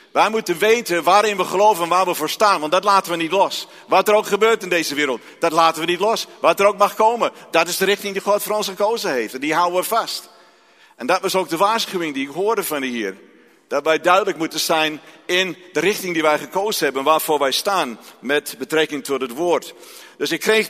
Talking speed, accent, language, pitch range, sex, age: 245 wpm, Dutch, Dutch, 160-205 Hz, male, 50-69